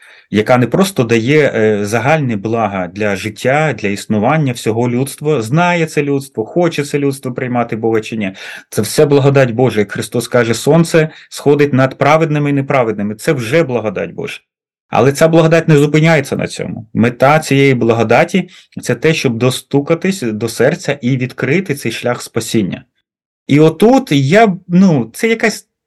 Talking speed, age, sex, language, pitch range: 155 wpm, 30-49, male, Ukrainian, 120-160 Hz